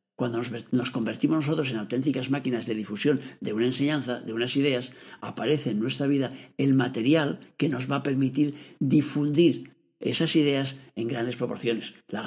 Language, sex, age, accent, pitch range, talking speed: Spanish, male, 50-69, Spanish, 130-160 Hz, 160 wpm